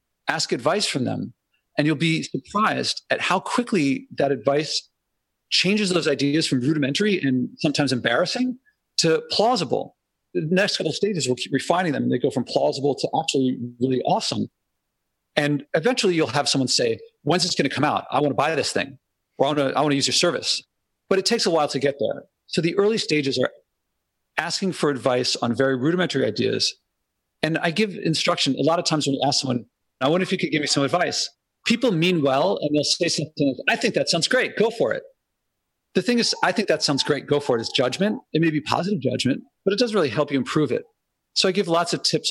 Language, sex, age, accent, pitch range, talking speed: English, male, 40-59, American, 140-190 Hz, 220 wpm